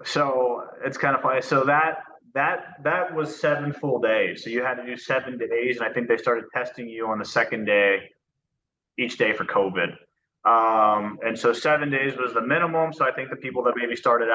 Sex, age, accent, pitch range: male, 20-39, American, 105-120 Hz